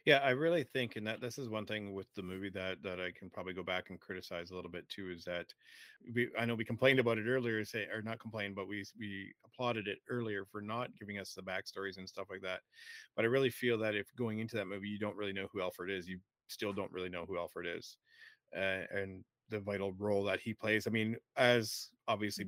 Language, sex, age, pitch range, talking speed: English, male, 30-49, 95-120 Hz, 250 wpm